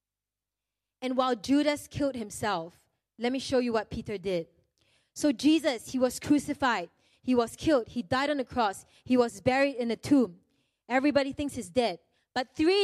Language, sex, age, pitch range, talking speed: English, female, 20-39, 235-290 Hz, 175 wpm